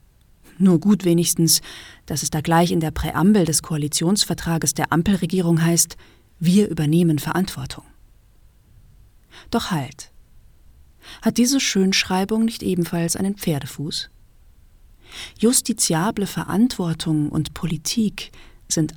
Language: German